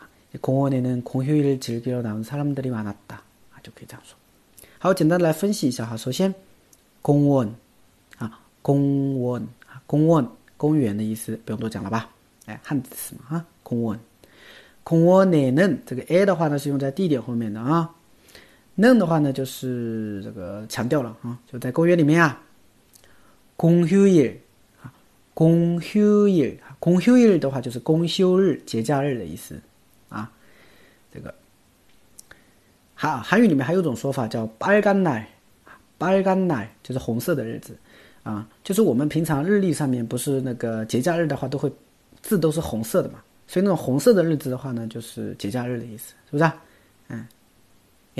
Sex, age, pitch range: male, 40-59, 115-165 Hz